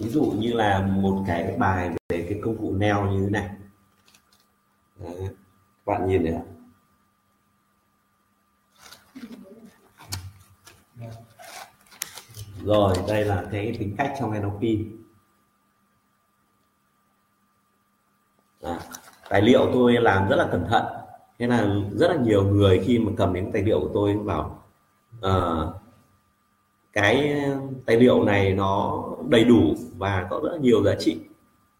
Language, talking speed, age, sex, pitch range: Vietnamese, 120 wpm, 20-39, male, 95-110 Hz